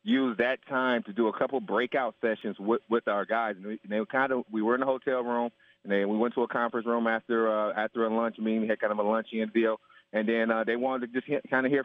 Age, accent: 30-49, American